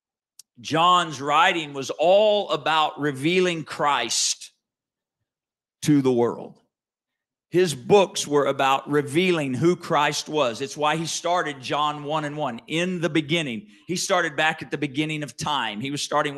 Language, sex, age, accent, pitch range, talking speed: English, male, 50-69, American, 150-200 Hz, 145 wpm